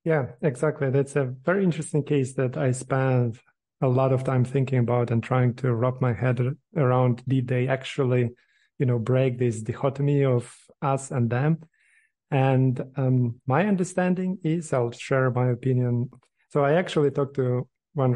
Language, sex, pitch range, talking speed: Ukrainian, male, 125-155 Hz, 165 wpm